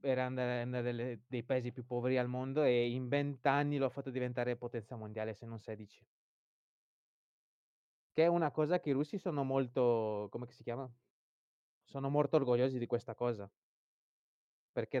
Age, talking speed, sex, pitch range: 20-39, 155 wpm, male, 115-135 Hz